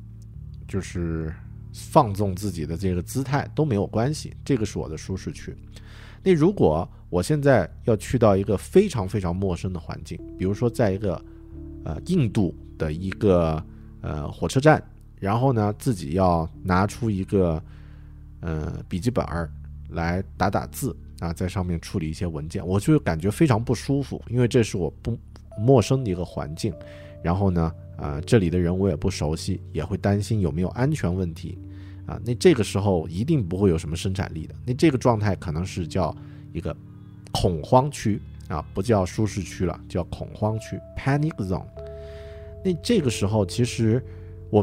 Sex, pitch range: male, 85-115 Hz